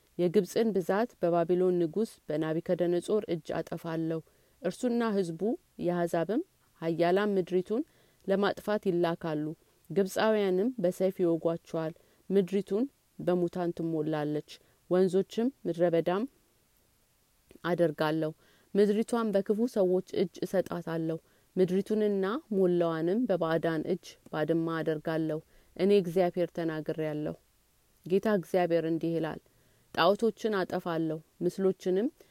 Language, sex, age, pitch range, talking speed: Amharic, female, 30-49, 165-200 Hz, 80 wpm